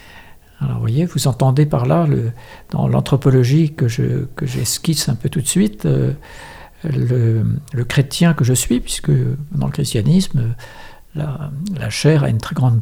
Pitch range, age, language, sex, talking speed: 120-155 Hz, 60-79, French, male, 165 wpm